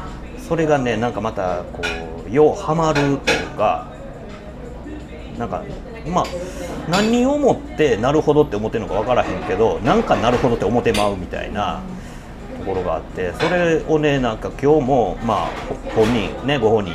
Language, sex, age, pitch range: Japanese, male, 40-59, 95-155 Hz